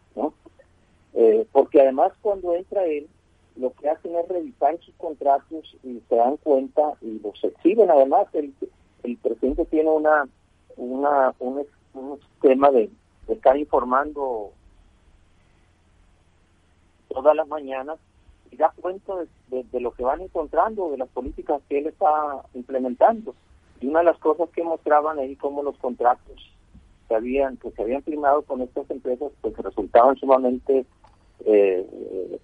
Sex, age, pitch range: male, 40-59, 125-170 Hz